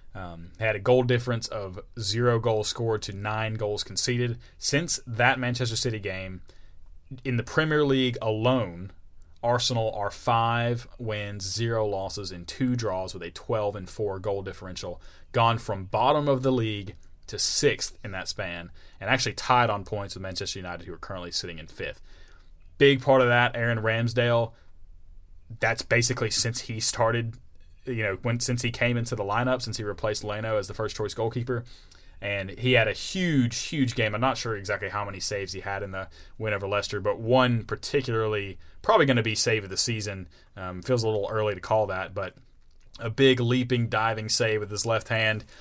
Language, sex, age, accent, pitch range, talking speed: English, male, 30-49, American, 95-120 Hz, 185 wpm